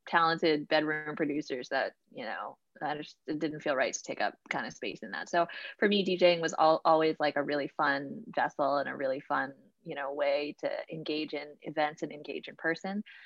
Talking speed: 205 wpm